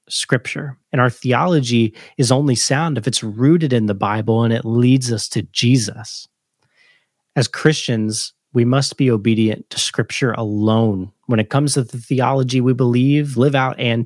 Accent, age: American, 30-49